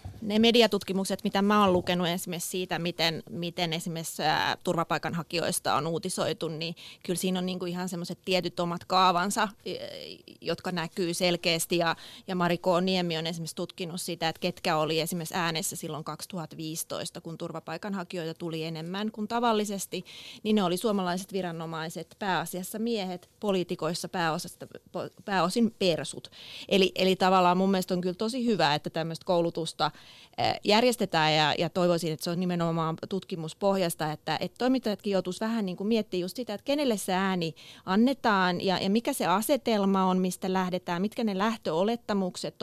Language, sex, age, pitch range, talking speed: Finnish, female, 30-49, 165-200 Hz, 145 wpm